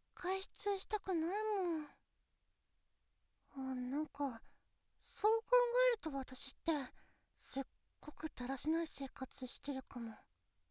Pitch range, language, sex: 260-375 Hz, Japanese, female